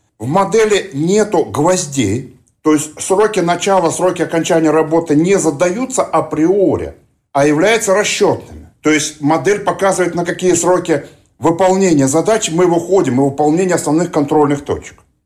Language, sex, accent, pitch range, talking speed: Russian, male, native, 145-180 Hz, 130 wpm